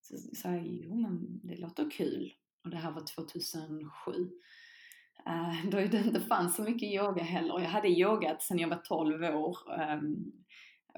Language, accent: Swedish, native